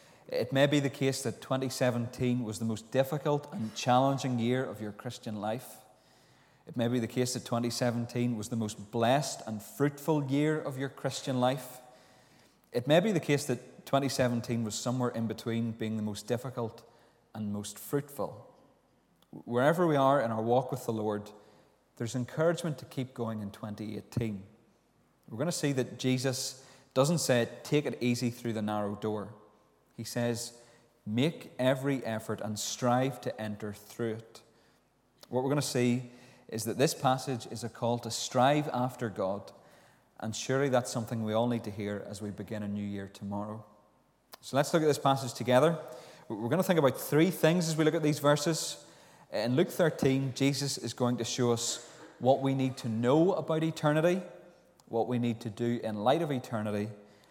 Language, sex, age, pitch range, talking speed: English, male, 30-49, 110-135 Hz, 180 wpm